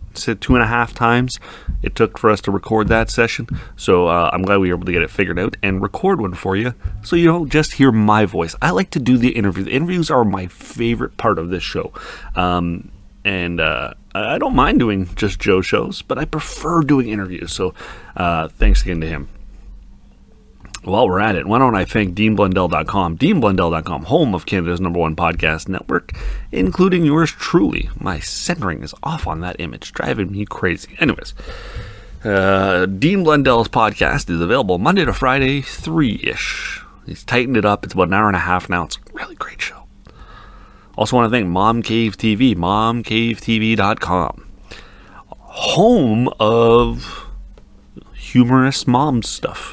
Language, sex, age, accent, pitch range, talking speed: English, male, 30-49, American, 90-120 Hz, 175 wpm